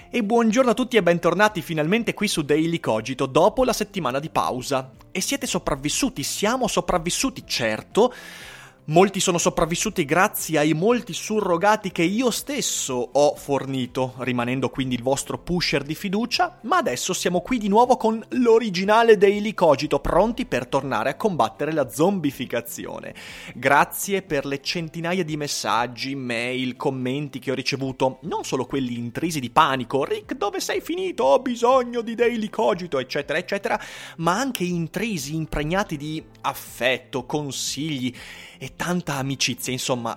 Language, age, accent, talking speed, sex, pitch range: Italian, 30-49, native, 145 wpm, male, 135-205 Hz